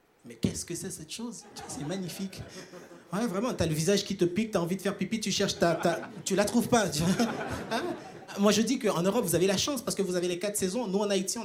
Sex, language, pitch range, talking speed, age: male, French, 170-235 Hz, 265 wpm, 30-49